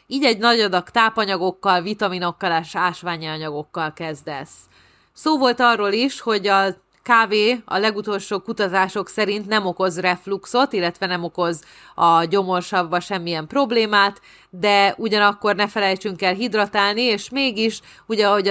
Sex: female